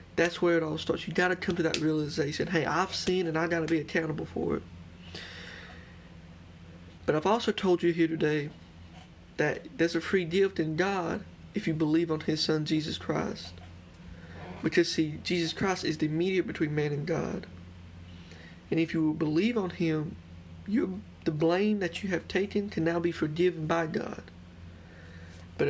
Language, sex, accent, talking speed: English, male, American, 180 wpm